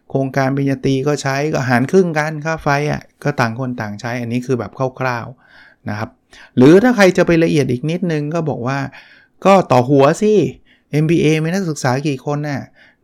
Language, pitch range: Thai, 120-150 Hz